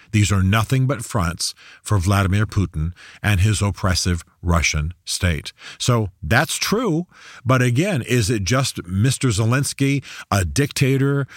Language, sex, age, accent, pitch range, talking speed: English, male, 40-59, American, 95-125 Hz, 130 wpm